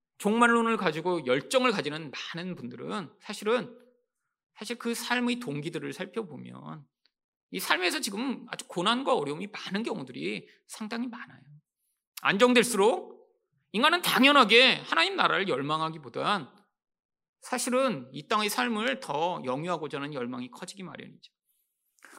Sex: male